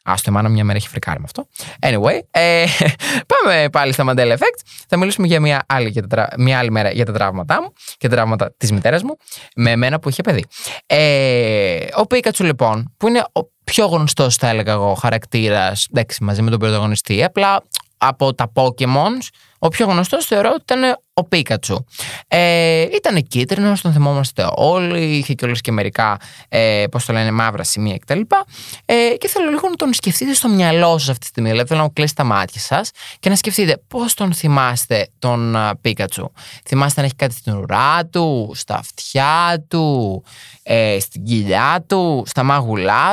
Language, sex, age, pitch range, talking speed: Greek, male, 20-39, 115-175 Hz, 190 wpm